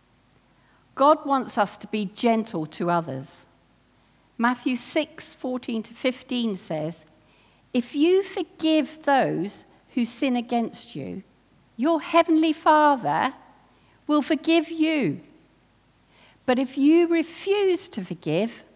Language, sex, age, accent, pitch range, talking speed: English, female, 50-69, British, 210-310 Hz, 105 wpm